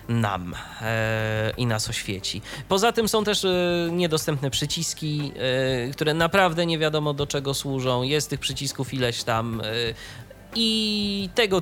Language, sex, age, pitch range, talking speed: Polish, male, 20-39, 125-165 Hz, 145 wpm